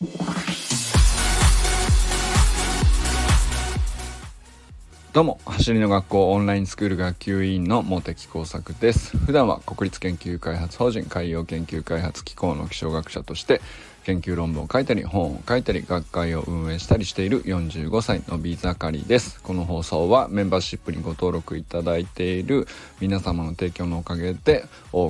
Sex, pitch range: male, 85-105 Hz